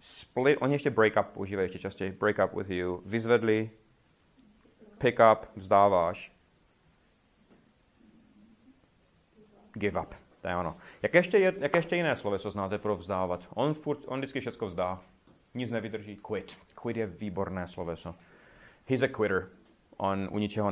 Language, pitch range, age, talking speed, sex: Czech, 95-130 Hz, 30-49, 140 wpm, male